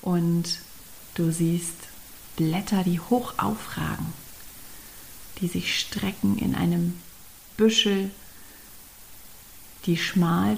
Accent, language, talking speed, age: German, German, 85 wpm, 40-59